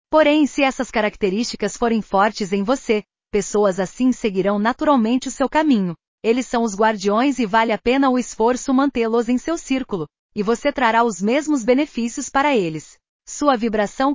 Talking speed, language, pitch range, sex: 165 wpm, Portuguese, 205-260 Hz, female